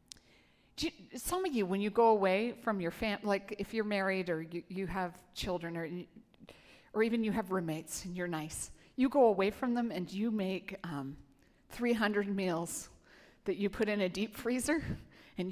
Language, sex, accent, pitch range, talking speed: English, female, American, 195-260 Hz, 180 wpm